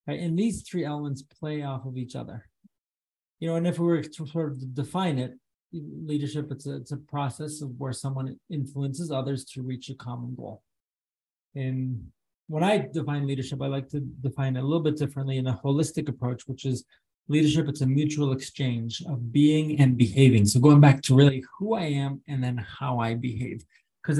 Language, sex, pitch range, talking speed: English, male, 130-160 Hz, 200 wpm